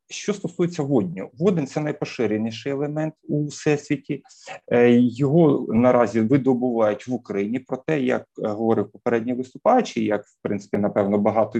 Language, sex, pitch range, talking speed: Ukrainian, male, 110-135 Hz, 125 wpm